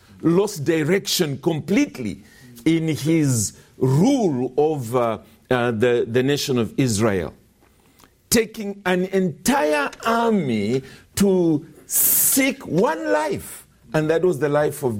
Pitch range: 120-175 Hz